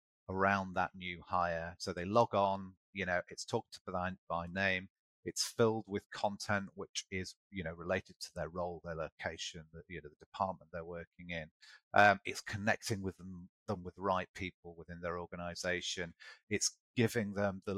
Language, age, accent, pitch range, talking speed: English, 30-49, British, 85-100 Hz, 180 wpm